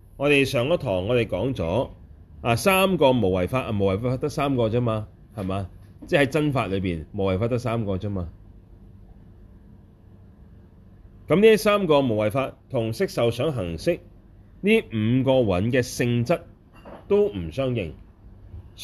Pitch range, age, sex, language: 95-130 Hz, 30-49, male, Chinese